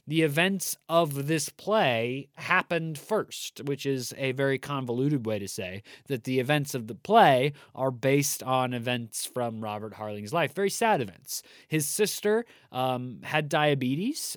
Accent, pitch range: American, 125-160 Hz